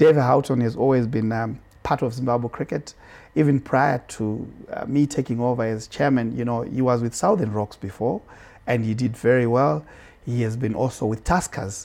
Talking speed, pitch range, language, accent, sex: 190 wpm, 115-140 Hz, English, South African, male